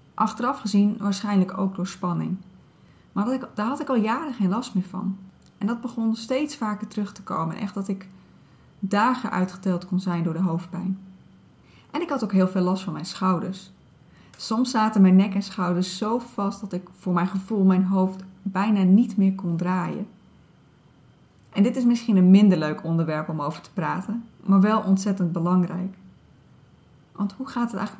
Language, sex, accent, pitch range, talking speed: Dutch, female, Dutch, 185-215 Hz, 180 wpm